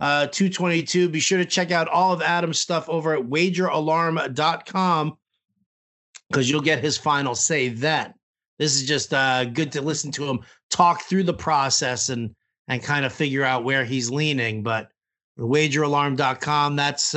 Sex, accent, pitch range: male, American, 145-185 Hz